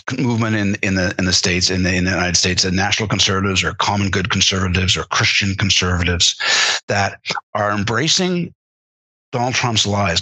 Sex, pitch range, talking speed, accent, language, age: male, 90-120 Hz, 170 wpm, American, English, 50-69